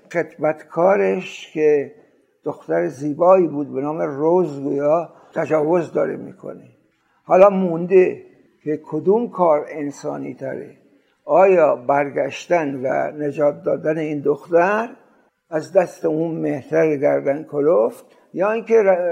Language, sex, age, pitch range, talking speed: Persian, male, 60-79, 150-190 Hz, 105 wpm